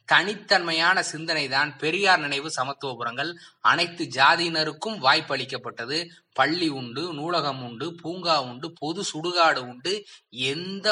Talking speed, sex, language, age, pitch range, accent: 110 wpm, male, Tamil, 20-39, 135-170 Hz, native